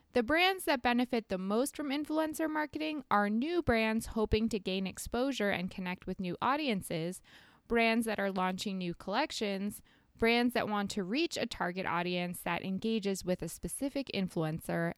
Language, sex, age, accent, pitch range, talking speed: English, female, 20-39, American, 185-245 Hz, 165 wpm